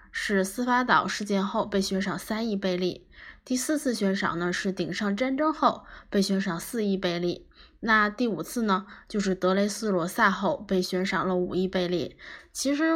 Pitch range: 180-230 Hz